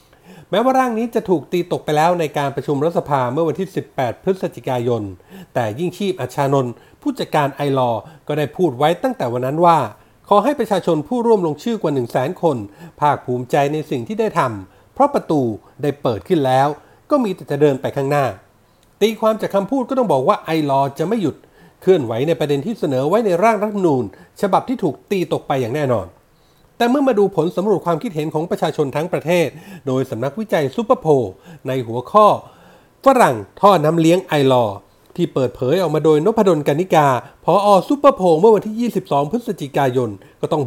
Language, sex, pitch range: Thai, male, 135-195 Hz